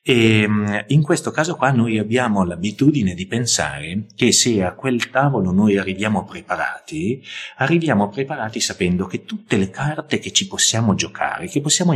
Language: Italian